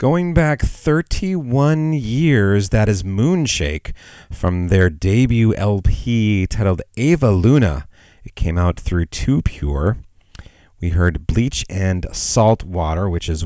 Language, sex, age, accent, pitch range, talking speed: English, male, 40-59, American, 90-110 Hz, 125 wpm